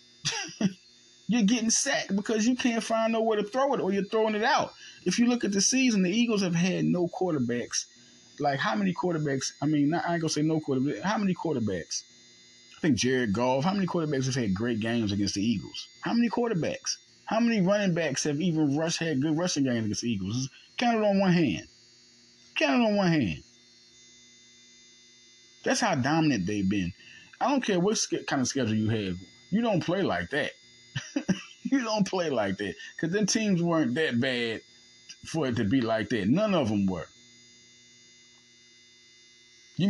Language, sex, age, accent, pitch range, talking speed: English, male, 30-49, American, 120-180 Hz, 190 wpm